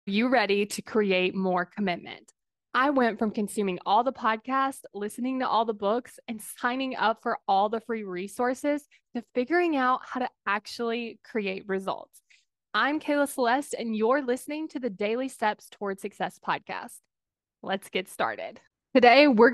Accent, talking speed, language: American, 160 wpm, English